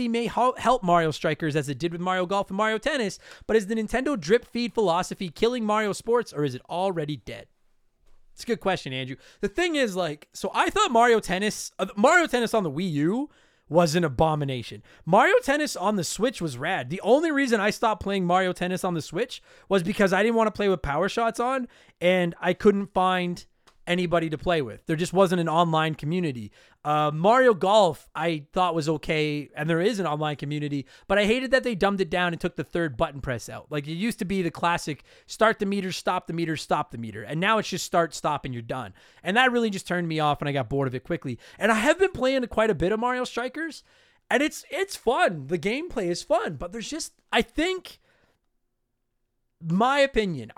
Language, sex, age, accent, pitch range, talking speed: English, male, 30-49, American, 160-225 Hz, 220 wpm